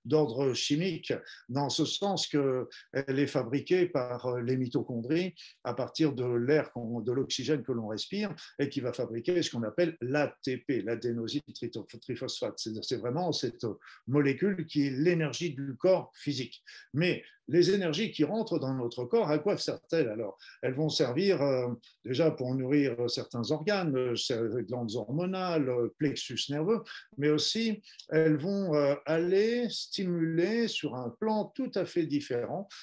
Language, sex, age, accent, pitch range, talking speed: French, male, 50-69, French, 130-175 Hz, 150 wpm